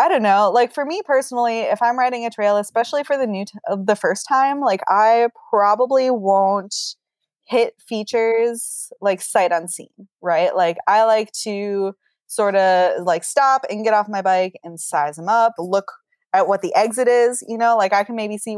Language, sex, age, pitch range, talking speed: English, female, 20-39, 175-230 Hz, 195 wpm